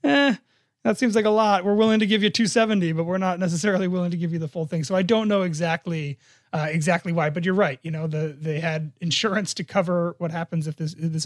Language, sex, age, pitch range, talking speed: English, male, 30-49, 155-190 Hz, 260 wpm